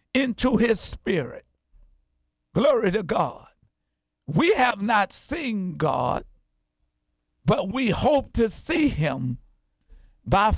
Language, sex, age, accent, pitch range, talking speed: English, male, 50-69, American, 190-270 Hz, 100 wpm